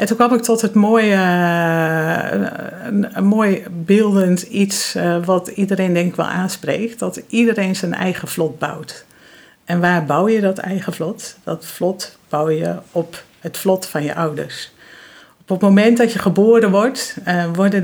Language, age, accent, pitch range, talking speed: Dutch, 50-69, Dutch, 165-200 Hz, 160 wpm